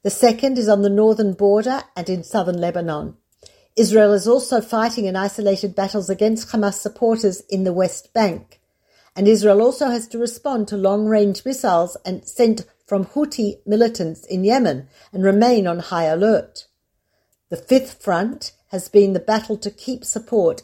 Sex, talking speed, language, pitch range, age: female, 160 wpm, Hebrew, 195-230 Hz, 50-69